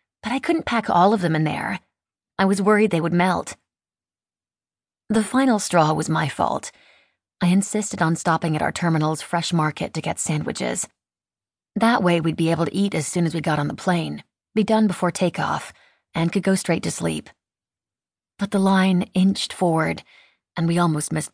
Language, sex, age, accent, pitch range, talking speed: English, female, 30-49, American, 155-195 Hz, 190 wpm